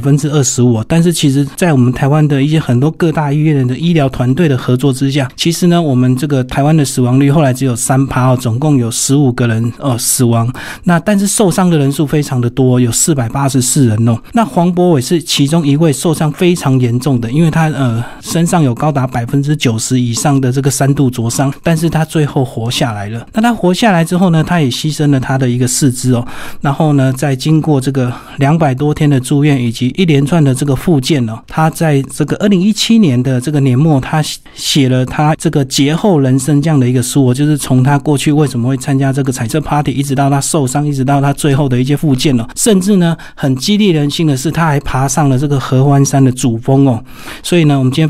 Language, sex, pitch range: Chinese, male, 130-155 Hz